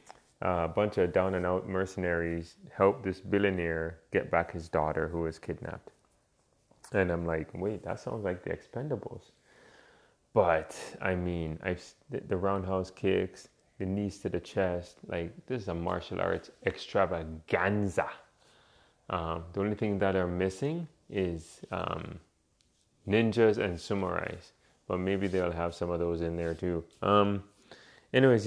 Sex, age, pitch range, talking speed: male, 20-39, 85-100 Hz, 145 wpm